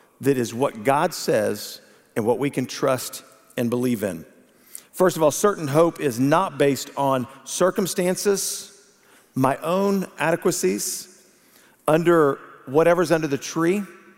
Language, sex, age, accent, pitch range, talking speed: English, male, 50-69, American, 140-175 Hz, 125 wpm